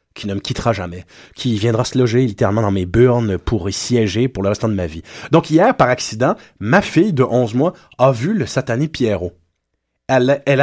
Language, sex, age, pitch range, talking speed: French, male, 30-49, 105-160 Hz, 215 wpm